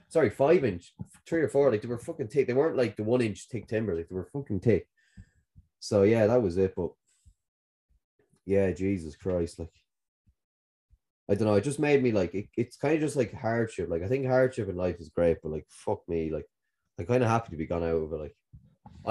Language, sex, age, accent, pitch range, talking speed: English, male, 20-39, Irish, 90-120 Hz, 230 wpm